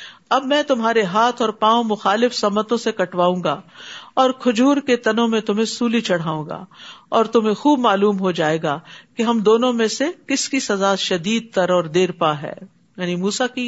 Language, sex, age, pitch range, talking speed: Urdu, female, 50-69, 195-255 Hz, 195 wpm